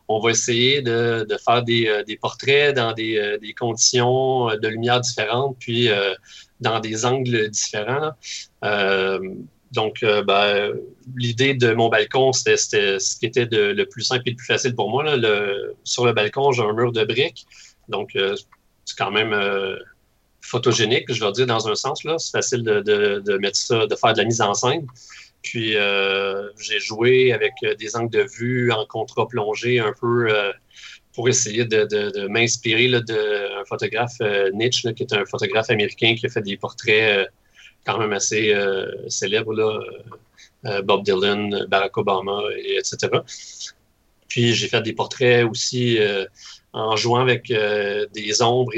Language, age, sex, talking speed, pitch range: French, 30-49, male, 170 wpm, 105-130 Hz